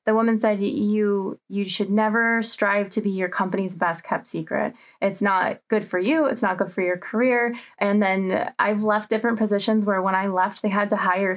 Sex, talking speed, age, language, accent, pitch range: female, 210 wpm, 20-39, English, American, 195-225 Hz